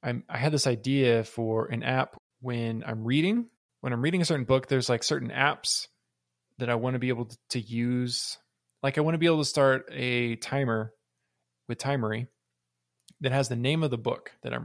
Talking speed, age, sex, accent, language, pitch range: 205 wpm, 20-39, male, American, English, 115-135 Hz